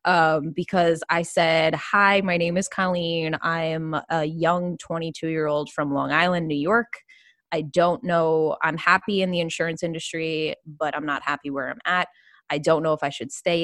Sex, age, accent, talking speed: female, 20-39, American, 195 wpm